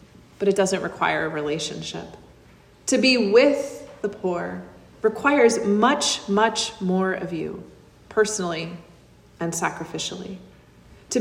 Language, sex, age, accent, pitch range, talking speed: English, female, 30-49, American, 185-225 Hz, 110 wpm